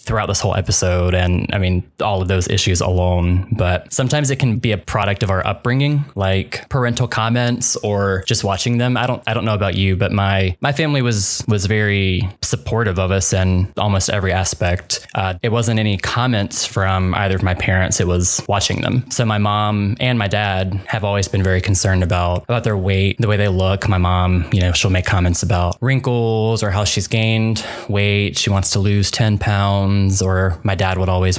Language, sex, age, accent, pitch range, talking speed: English, male, 10-29, American, 95-110 Hz, 205 wpm